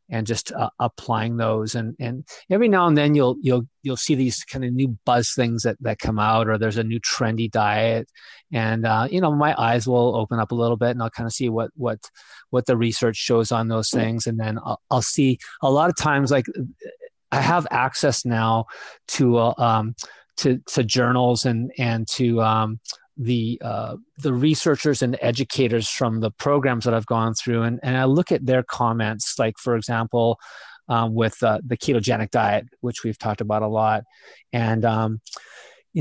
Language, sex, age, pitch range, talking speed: English, male, 30-49, 115-135 Hz, 200 wpm